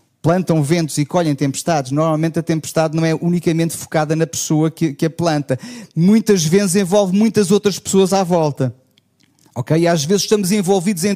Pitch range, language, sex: 155-245 Hz, Portuguese, male